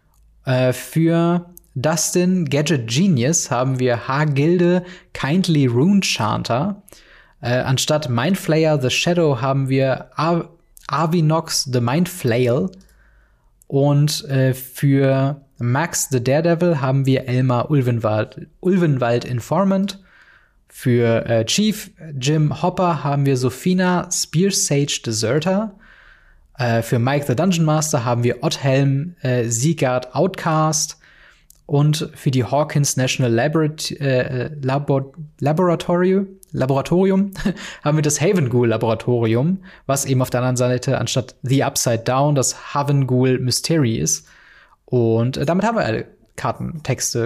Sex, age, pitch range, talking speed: male, 20-39, 130-175 Hz, 115 wpm